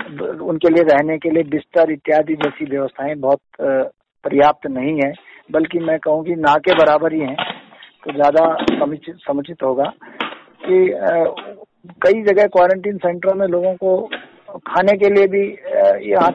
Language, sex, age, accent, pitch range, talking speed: Hindi, male, 50-69, native, 160-220 Hz, 145 wpm